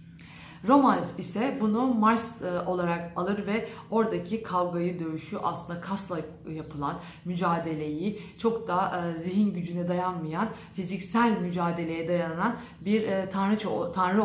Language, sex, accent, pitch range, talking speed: Turkish, female, native, 165-215 Hz, 105 wpm